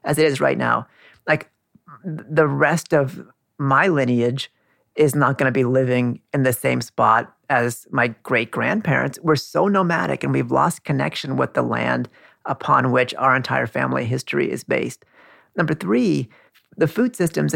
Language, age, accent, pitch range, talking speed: English, 40-59, American, 125-165 Hz, 165 wpm